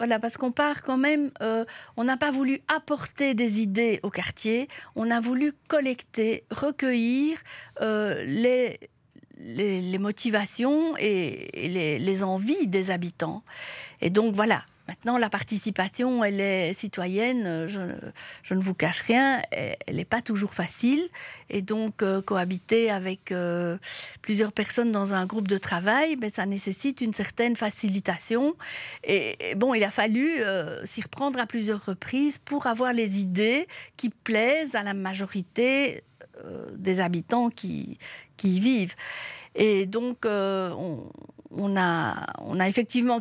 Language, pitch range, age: French, 195-250 Hz, 50-69